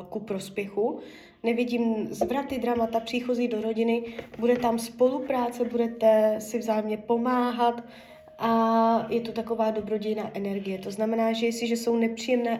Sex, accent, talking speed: female, native, 130 wpm